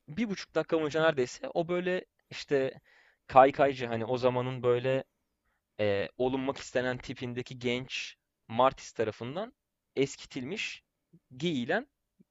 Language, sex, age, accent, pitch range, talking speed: Turkish, male, 30-49, native, 120-155 Hz, 105 wpm